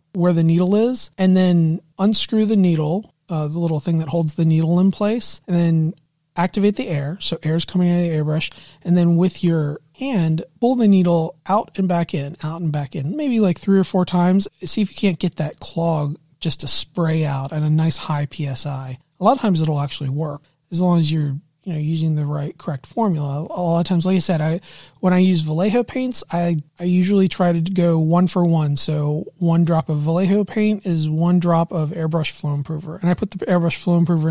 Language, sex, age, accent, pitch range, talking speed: English, male, 30-49, American, 155-185 Hz, 225 wpm